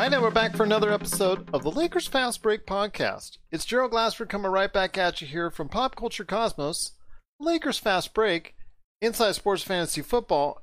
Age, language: 40-59, English